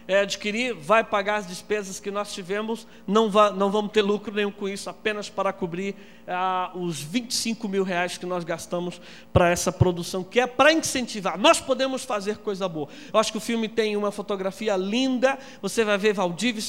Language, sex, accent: Portuguese, male, Brazilian